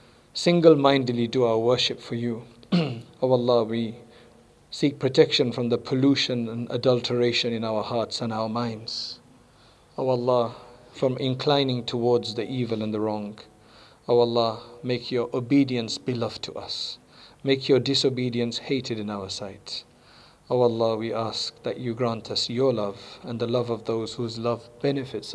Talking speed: 155 wpm